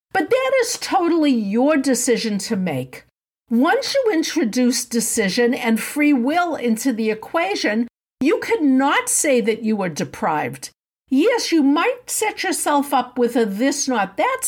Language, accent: English, American